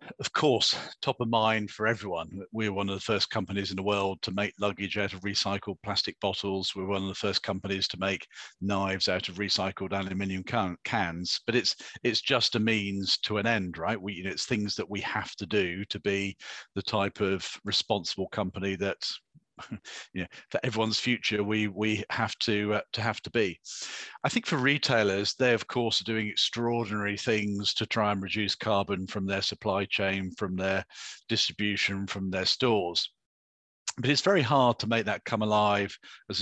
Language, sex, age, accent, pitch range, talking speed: English, male, 50-69, British, 95-115 Hz, 195 wpm